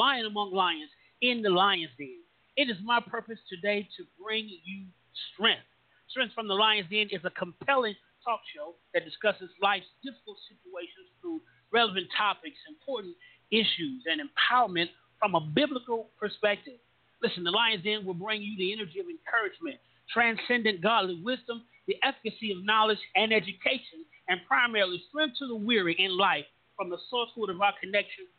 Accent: American